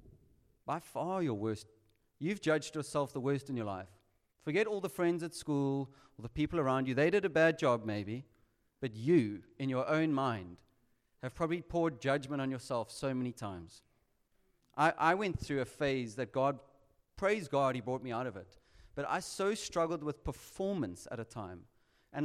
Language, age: English, 30-49